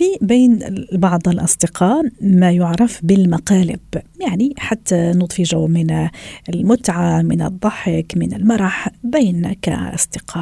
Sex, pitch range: female, 180-225 Hz